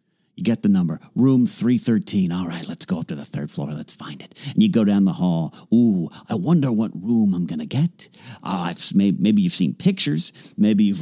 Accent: American